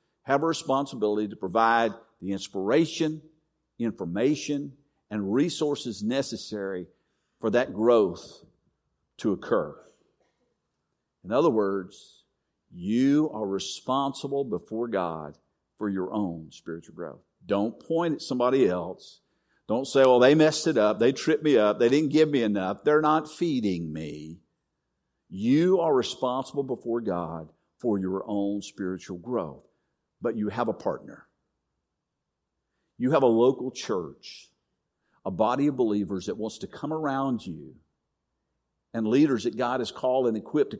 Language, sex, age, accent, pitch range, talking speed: English, male, 50-69, American, 95-135 Hz, 135 wpm